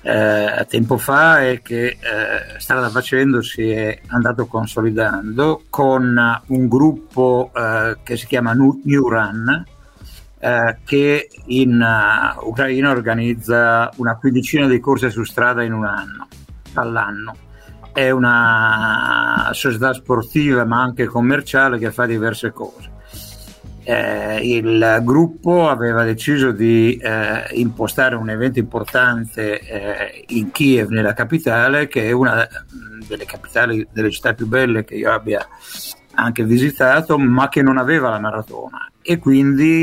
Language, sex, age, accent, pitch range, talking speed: Italian, male, 60-79, native, 110-135 Hz, 130 wpm